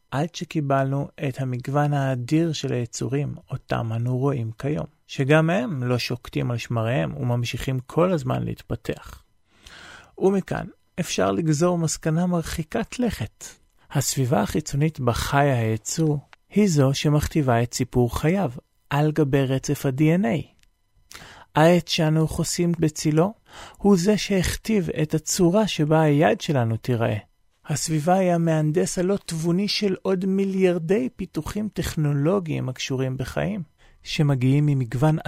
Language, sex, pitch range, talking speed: Hebrew, male, 130-170 Hz, 115 wpm